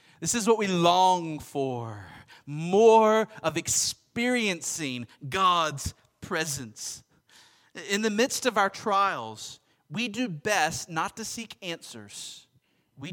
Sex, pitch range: male, 125-185 Hz